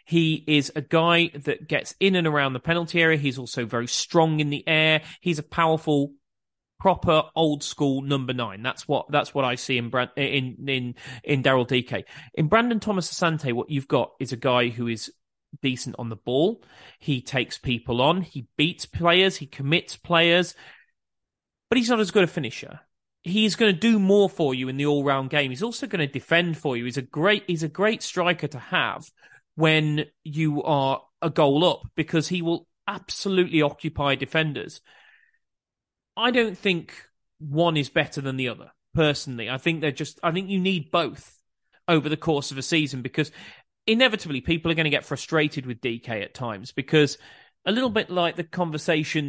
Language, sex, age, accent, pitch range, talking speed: English, male, 30-49, British, 135-170 Hz, 190 wpm